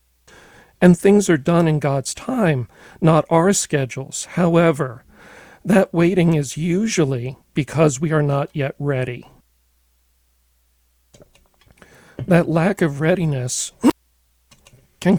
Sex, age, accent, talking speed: male, 50-69, American, 105 wpm